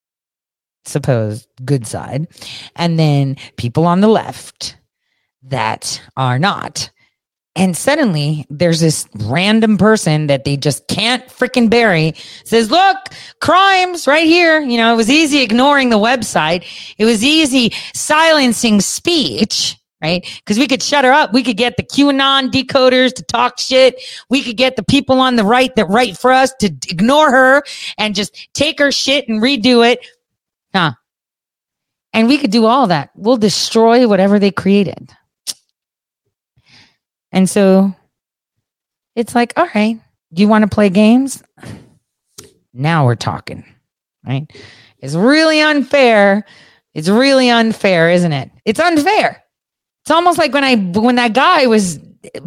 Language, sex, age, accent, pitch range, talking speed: English, female, 40-59, American, 175-265 Hz, 145 wpm